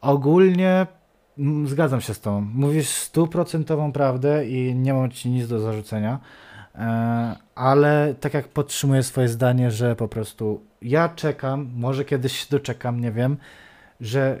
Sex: male